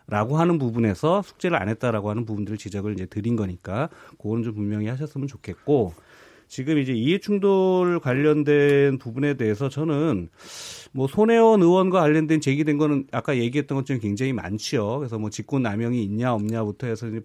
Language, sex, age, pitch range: Korean, male, 30-49, 115-170 Hz